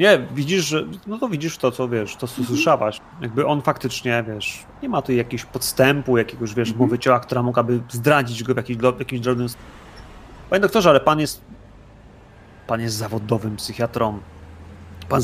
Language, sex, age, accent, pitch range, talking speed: Polish, male, 30-49, native, 115-140 Hz, 165 wpm